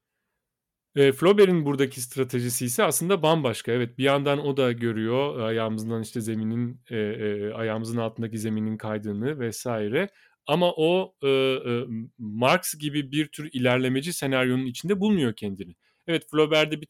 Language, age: Turkish, 40-59